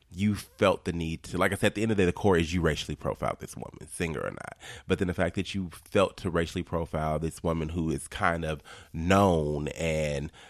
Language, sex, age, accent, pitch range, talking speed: English, male, 30-49, American, 75-95 Hz, 245 wpm